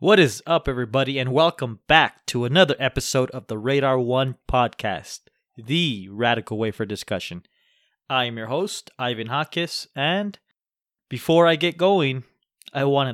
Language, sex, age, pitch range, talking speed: English, male, 20-39, 120-150 Hz, 150 wpm